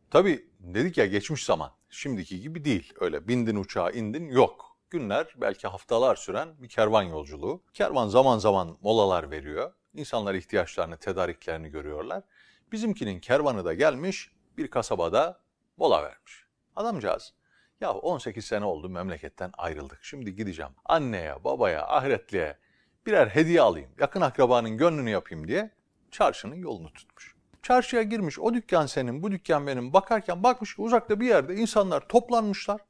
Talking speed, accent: 140 wpm, native